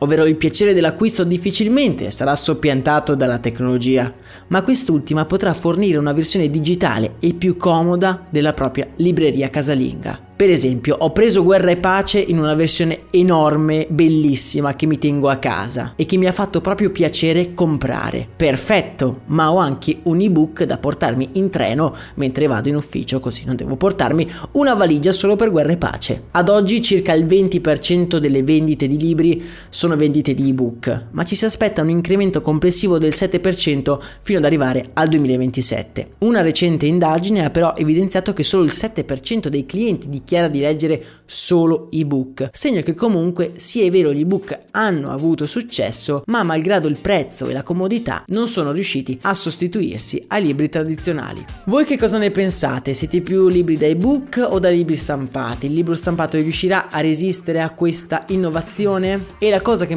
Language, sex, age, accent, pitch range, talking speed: Italian, male, 20-39, native, 145-185 Hz, 170 wpm